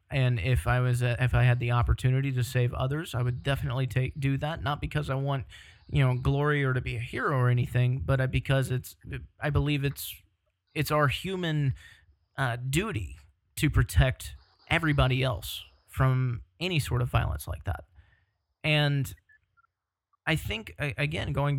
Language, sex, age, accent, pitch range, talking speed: English, male, 30-49, American, 95-140 Hz, 165 wpm